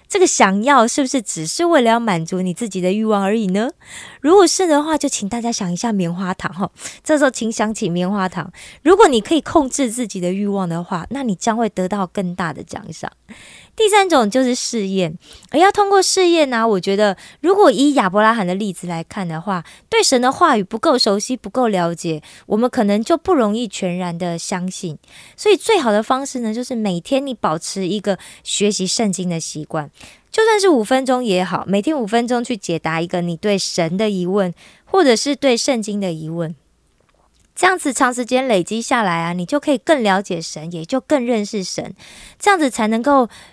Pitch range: 185-270 Hz